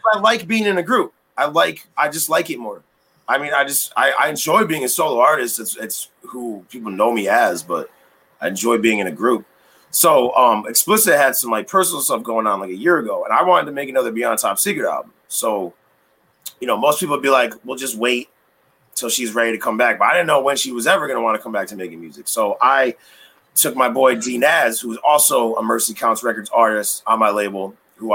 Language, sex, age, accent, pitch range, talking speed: English, male, 30-49, American, 110-140 Hz, 240 wpm